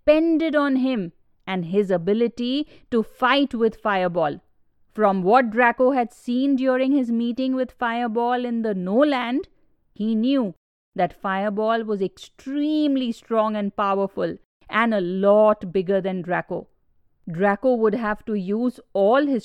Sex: female